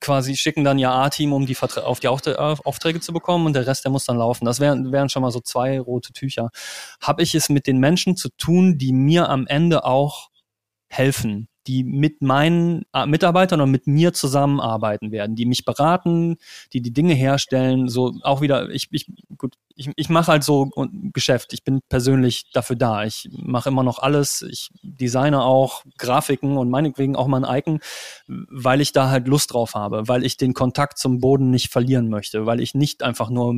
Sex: male